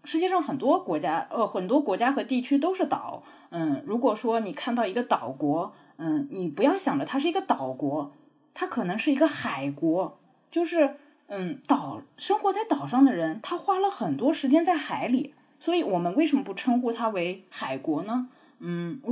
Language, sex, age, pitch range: Chinese, female, 20-39, 205-295 Hz